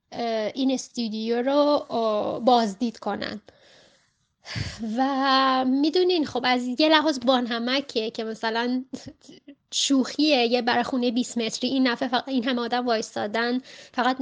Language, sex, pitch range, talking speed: Persian, female, 230-270 Hz, 105 wpm